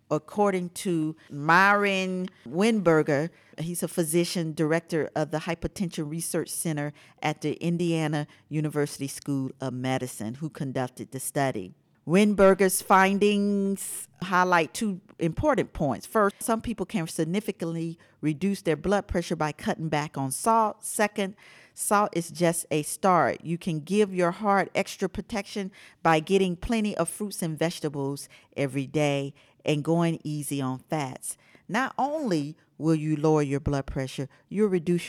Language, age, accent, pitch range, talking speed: English, 50-69, American, 150-195 Hz, 140 wpm